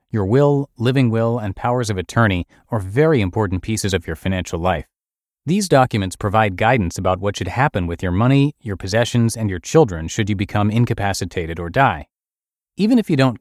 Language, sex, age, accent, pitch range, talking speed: English, male, 30-49, American, 95-130 Hz, 190 wpm